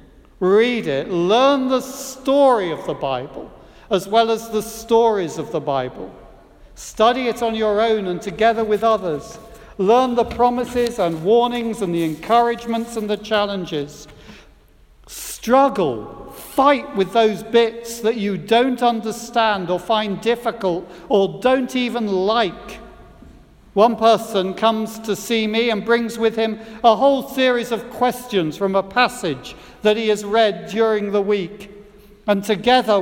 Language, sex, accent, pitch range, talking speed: English, male, British, 165-225 Hz, 145 wpm